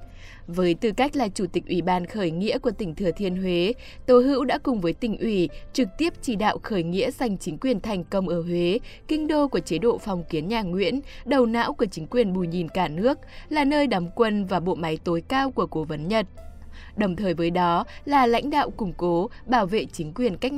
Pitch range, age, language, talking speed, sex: 175-245 Hz, 20-39, Vietnamese, 235 wpm, female